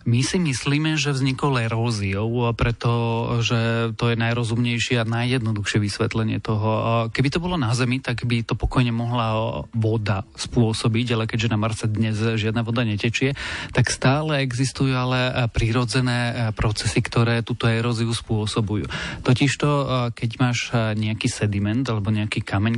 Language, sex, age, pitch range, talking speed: Slovak, male, 30-49, 110-125 Hz, 135 wpm